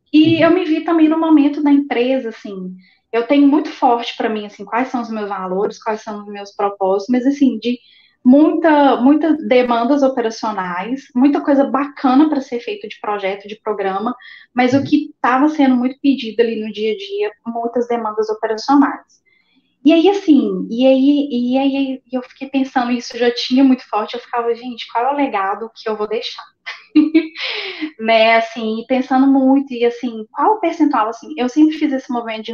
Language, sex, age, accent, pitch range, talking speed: Portuguese, female, 10-29, Brazilian, 220-280 Hz, 185 wpm